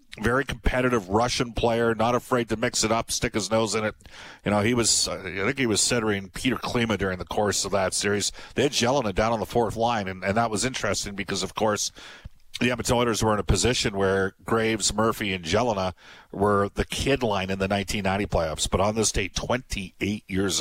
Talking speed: 215 wpm